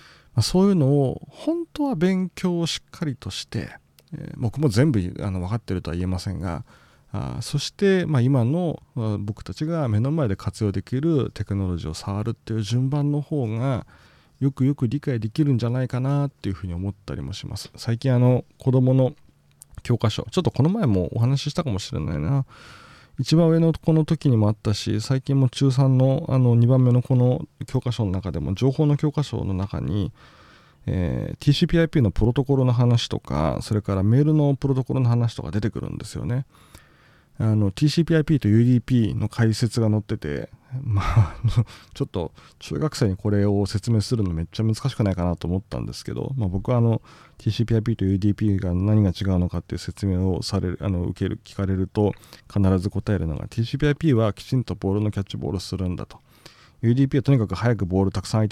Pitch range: 100-135 Hz